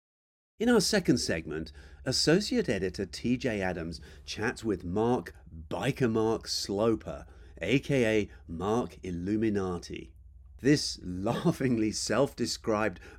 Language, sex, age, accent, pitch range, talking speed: English, male, 40-59, British, 85-130 Hz, 90 wpm